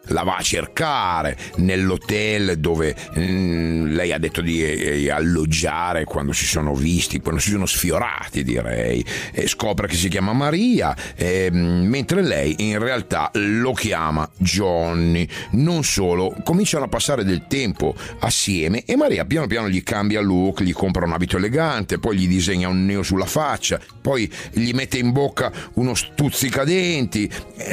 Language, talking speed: Italian, 150 wpm